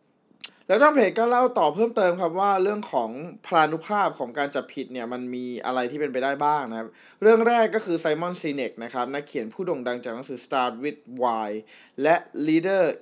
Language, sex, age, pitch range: Thai, male, 20-39, 135-185 Hz